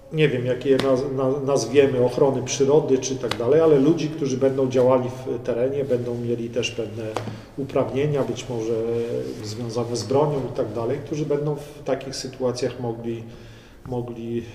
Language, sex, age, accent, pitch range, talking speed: Polish, male, 40-59, native, 120-150 Hz, 150 wpm